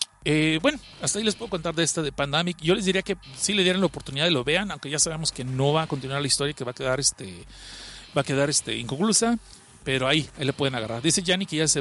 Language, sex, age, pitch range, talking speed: Spanish, male, 40-59, 130-175 Hz, 285 wpm